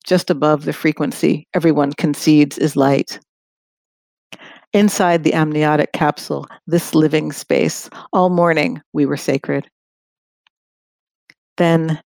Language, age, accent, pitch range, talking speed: English, 50-69, American, 155-170 Hz, 105 wpm